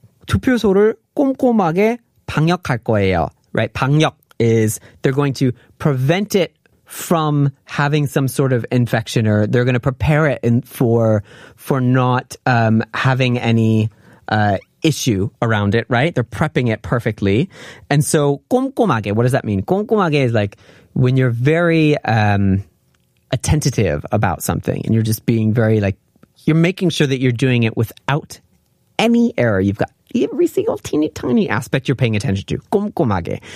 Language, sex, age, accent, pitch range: Korean, male, 30-49, American, 115-160 Hz